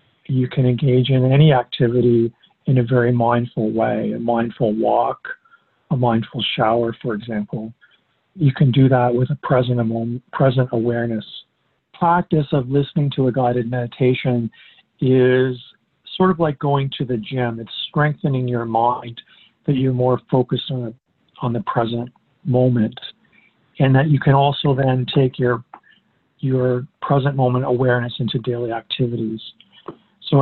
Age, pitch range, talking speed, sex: 50-69, 120-145 Hz, 140 wpm, male